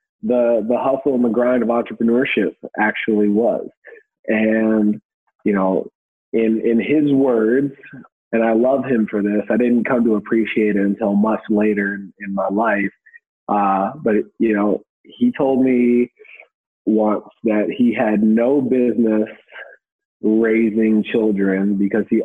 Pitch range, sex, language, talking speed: 105-125 Hz, male, English, 145 wpm